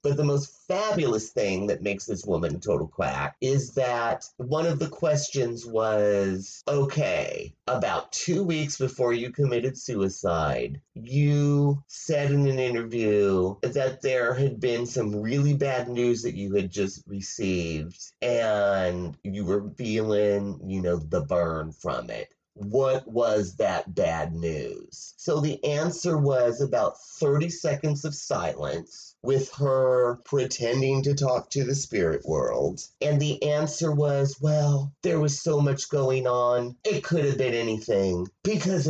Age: 30-49